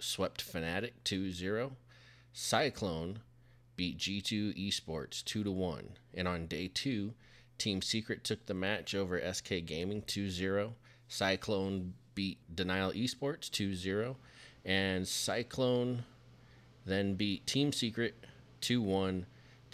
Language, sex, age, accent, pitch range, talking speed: English, male, 30-49, American, 85-115 Hz, 100 wpm